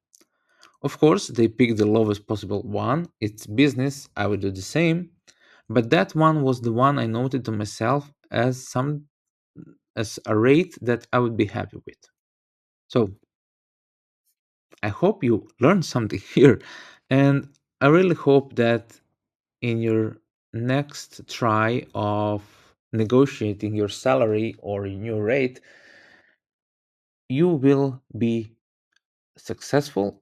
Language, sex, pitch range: English, male, 105-140 Hz